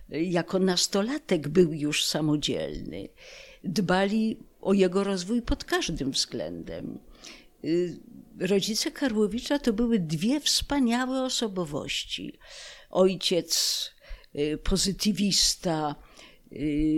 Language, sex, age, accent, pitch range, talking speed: Polish, female, 50-69, native, 165-230 Hz, 75 wpm